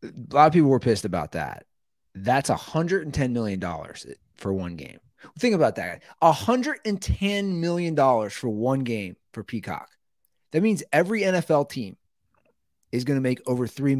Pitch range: 100-140 Hz